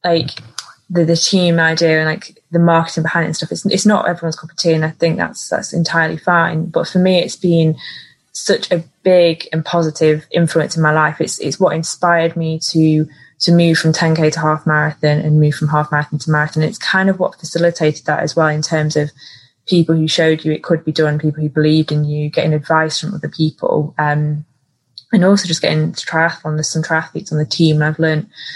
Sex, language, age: female, English, 20-39